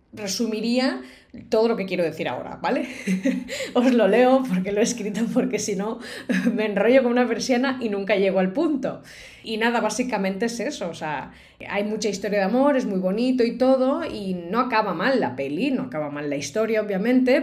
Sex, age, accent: female, 20-39, Spanish